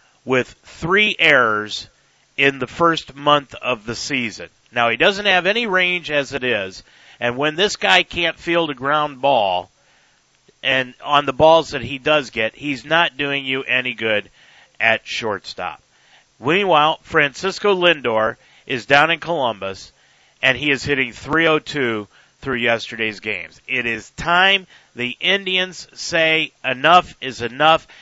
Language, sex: English, male